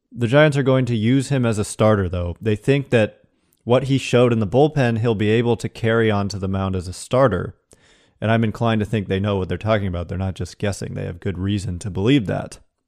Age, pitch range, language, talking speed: 30-49, 100-120 Hz, English, 245 wpm